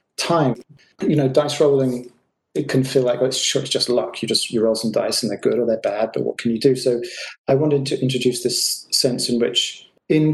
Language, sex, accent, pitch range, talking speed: English, male, British, 120-135 Hz, 230 wpm